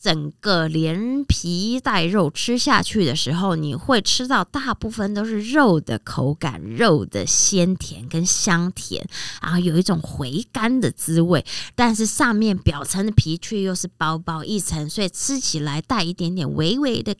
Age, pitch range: 20-39, 155-205 Hz